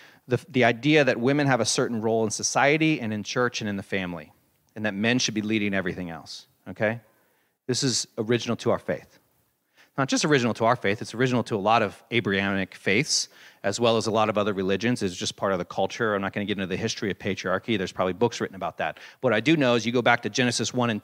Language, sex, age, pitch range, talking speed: English, male, 40-59, 105-140 Hz, 255 wpm